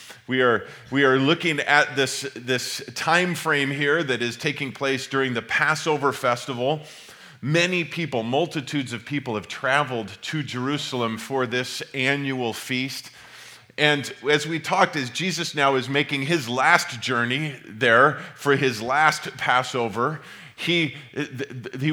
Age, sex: 40-59, male